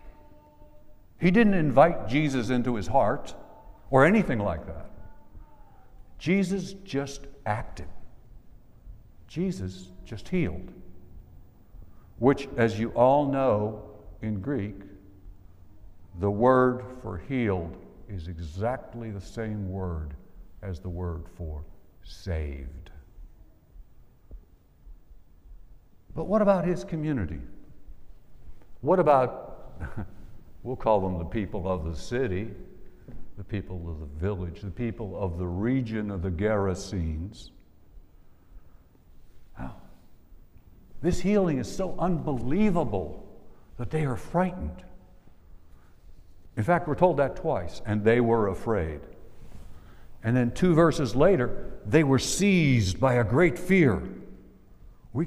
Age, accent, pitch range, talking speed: 60-79, American, 90-130 Hz, 105 wpm